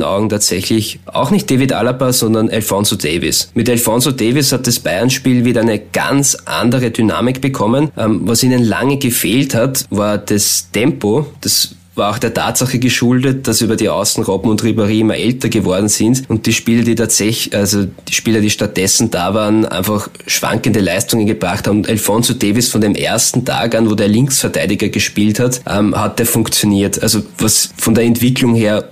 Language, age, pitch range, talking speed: German, 20-39, 100-120 Hz, 175 wpm